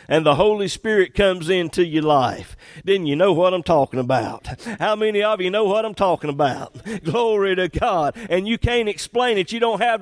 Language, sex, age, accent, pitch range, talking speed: English, male, 50-69, American, 120-175 Hz, 210 wpm